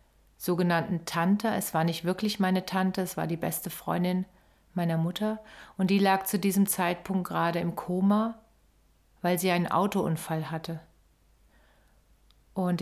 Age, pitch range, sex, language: 40-59, 155-190 Hz, female, German